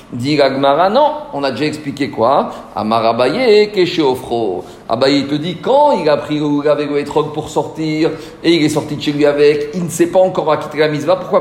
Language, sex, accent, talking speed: French, male, French, 215 wpm